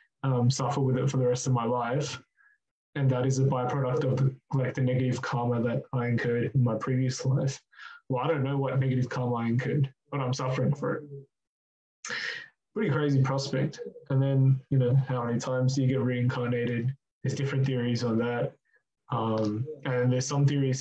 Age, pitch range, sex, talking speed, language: 20-39, 125-135 Hz, male, 190 wpm, English